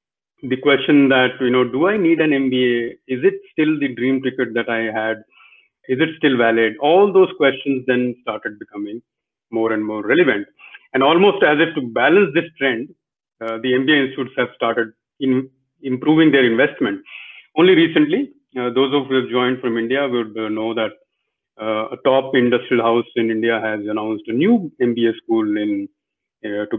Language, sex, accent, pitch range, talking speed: English, male, Indian, 120-165 Hz, 180 wpm